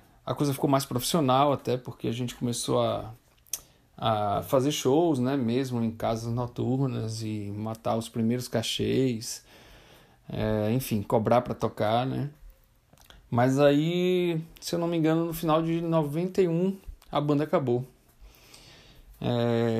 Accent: Brazilian